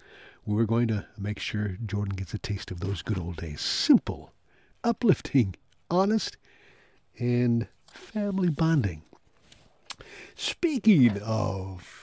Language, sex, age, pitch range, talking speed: English, male, 60-79, 100-135 Hz, 110 wpm